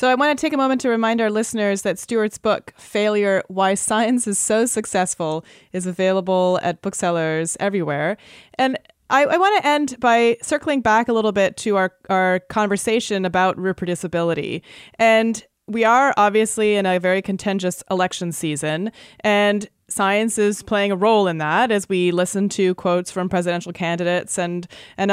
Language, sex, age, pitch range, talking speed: English, female, 30-49, 180-225 Hz, 170 wpm